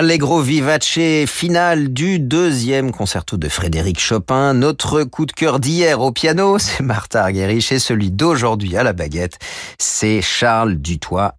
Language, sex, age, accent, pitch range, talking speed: French, male, 40-59, French, 90-135 Hz, 150 wpm